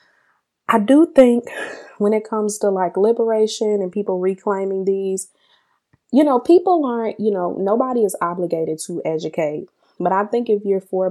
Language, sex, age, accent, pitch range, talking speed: English, female, 20-39, American, 170-210 Hz, 160 wpm